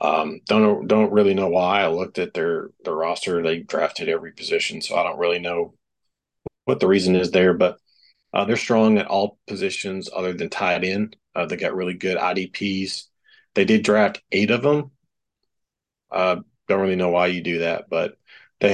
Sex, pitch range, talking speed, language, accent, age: male, 90-105 Hz, 190 wpm, English, American, 40-59